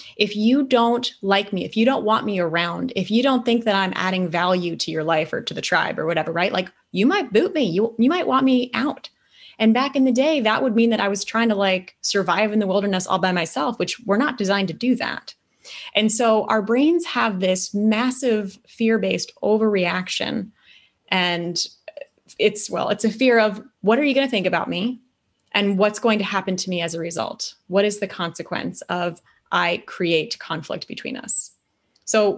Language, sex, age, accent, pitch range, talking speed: English, female, 20-39, American, 185-230 Hz, 210 wpm